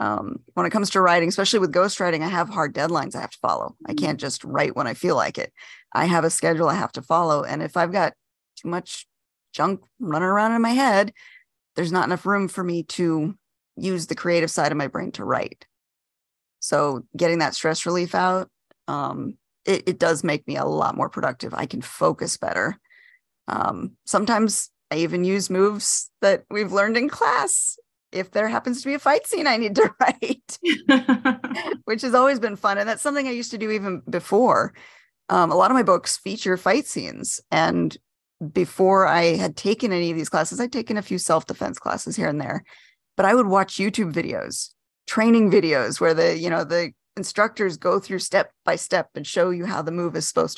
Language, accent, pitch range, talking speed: English, American, 175-225 Hz, 205 wpm